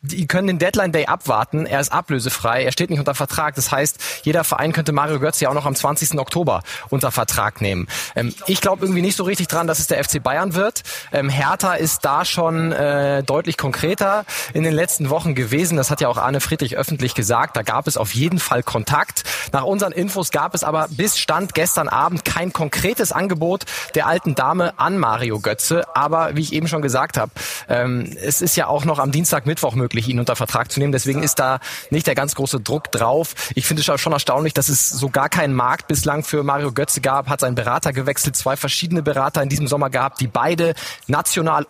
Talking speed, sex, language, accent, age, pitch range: 215 wpm, male, German, German, 20-39, 140-170 Hz